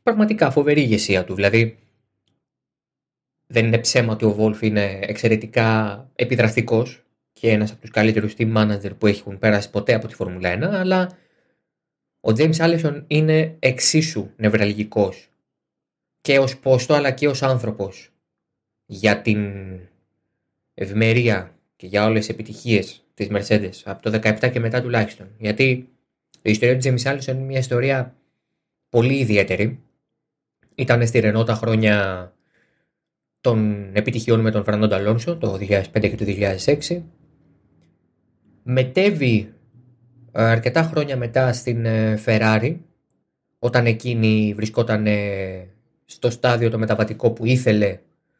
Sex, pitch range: male, 105-130 Hz